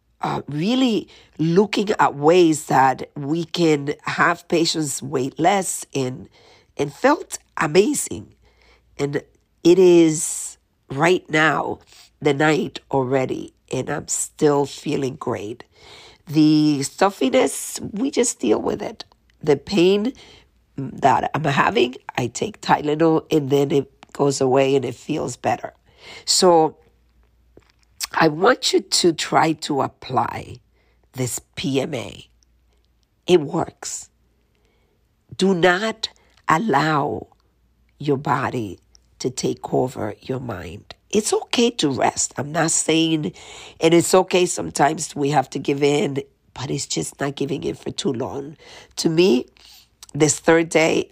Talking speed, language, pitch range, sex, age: 125 wpm, English, 135-170 Hz, female, 50-69